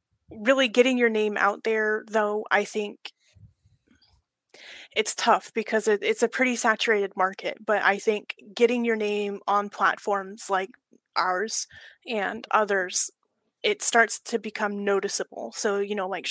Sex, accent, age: female, American, 20-39